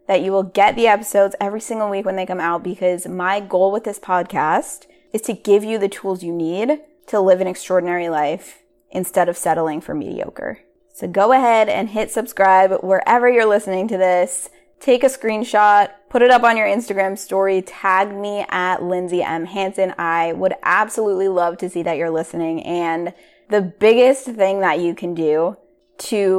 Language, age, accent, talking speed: English, 20-39, American, 185 wpm